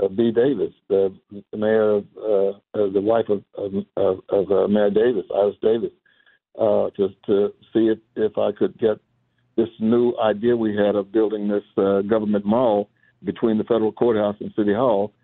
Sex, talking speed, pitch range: male, 160 wpm, 105-120 Hz